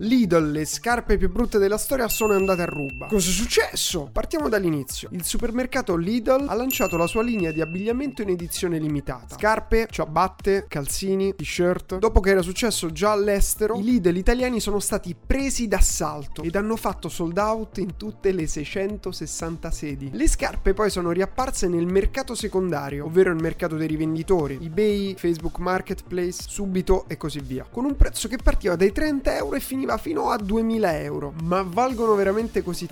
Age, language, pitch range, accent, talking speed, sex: 30-49, Italian, 175-230 Hz, native, 170 wpm, male